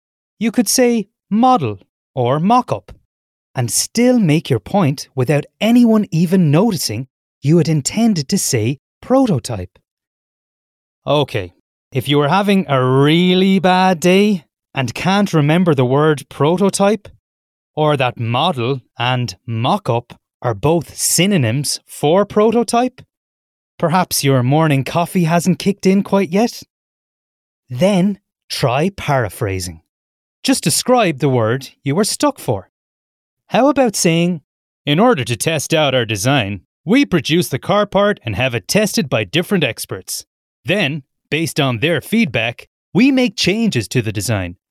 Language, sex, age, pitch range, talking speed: English, male, 30-49, 120-195 Hz, 135 wpm